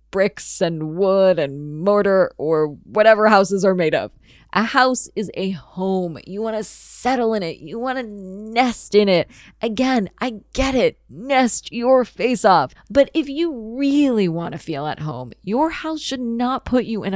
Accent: American